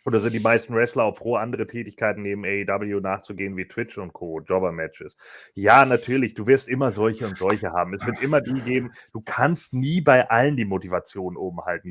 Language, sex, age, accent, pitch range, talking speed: German, male, 30-49, German, 115-150 Hz, 200 wpm